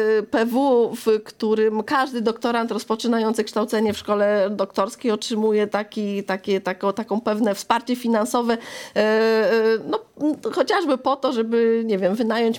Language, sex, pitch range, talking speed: Polish, female, 205-235 Hz, 125 wpm